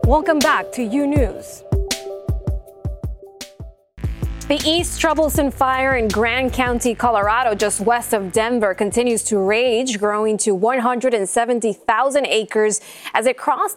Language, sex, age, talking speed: English, female, 20-39, 120 wpm